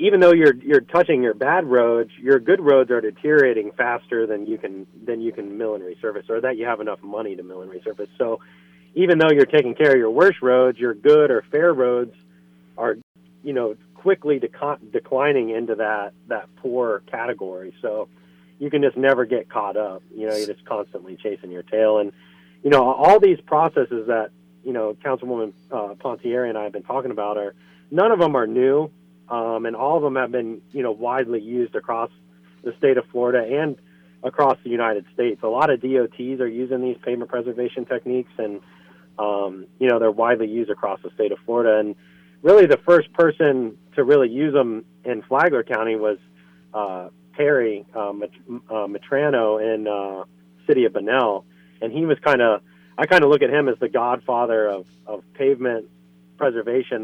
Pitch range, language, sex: 95-130 Hz, English, male